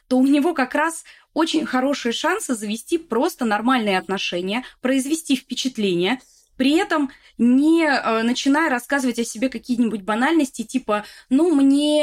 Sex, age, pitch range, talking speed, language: female, 20-39, 215-275 Hz, 135 wpm, Russian